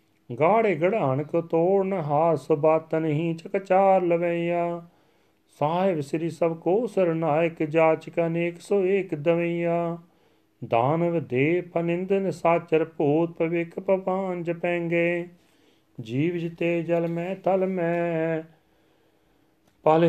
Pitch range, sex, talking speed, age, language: 160-175 Hz, male, 100 wpm, 40-59, Punjabi